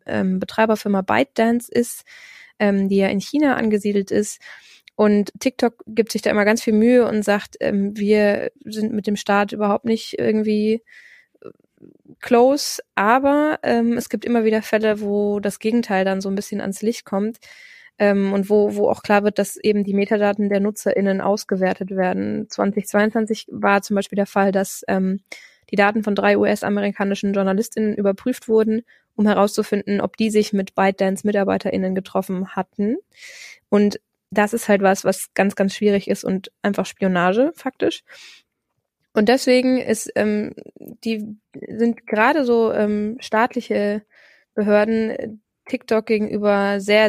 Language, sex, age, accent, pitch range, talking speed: German, female, 20-39, German, 200-225 Hz, 150 wpm